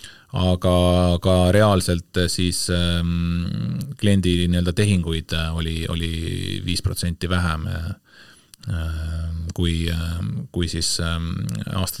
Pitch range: 90-105 Hz